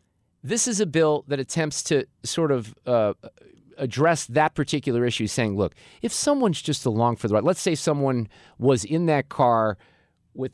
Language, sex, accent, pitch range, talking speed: English, male, American, 120-190 Hz, 175 wpm